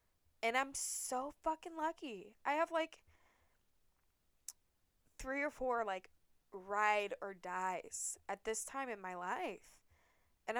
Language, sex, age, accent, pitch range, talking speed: English, female, 20-39, American, 190-255 Hz, 125 wpm